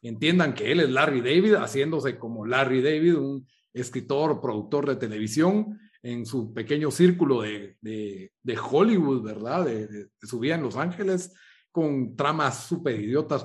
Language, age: Spanish, 40-59